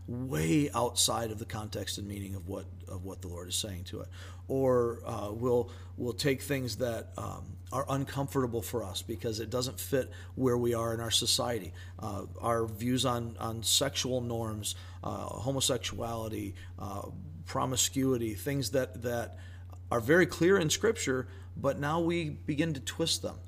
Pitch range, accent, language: 95-130 Hz, American, English